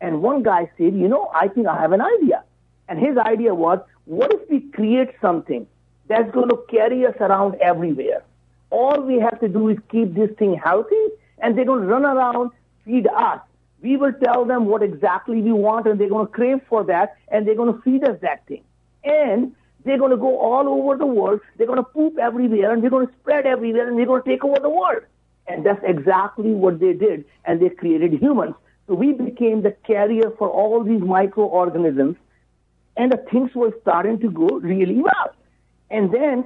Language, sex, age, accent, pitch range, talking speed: English, male, 60-79, Indian, 185-255 Hz, 205 wpm